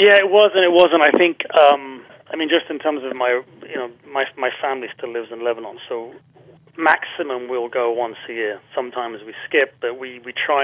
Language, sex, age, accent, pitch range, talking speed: English, male, 30-49, British, 120-155 Hz, 220 wpm